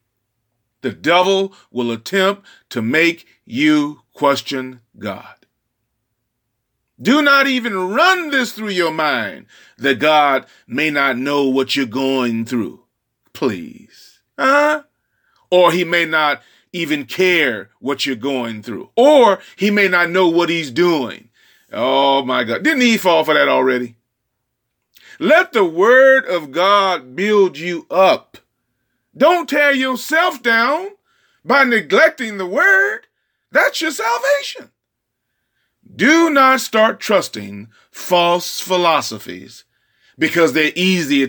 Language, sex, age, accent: English, male, 40-59, American